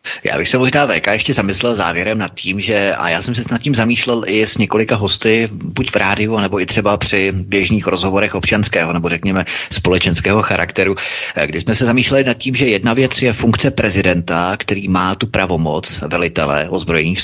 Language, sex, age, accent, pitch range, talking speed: Czech, male, 30-49, native, 85-115 Hz, 190 wpm